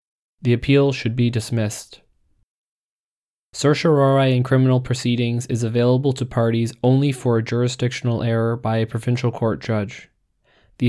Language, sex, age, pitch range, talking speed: English, male, 20-39, 115-125 Hz, 130 wpm